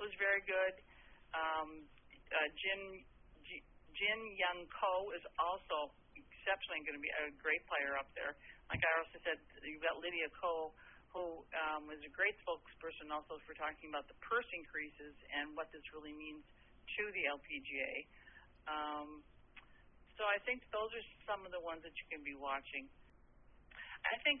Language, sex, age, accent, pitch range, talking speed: English, female, 50-69, American, 150-175 Hz, 160 wpm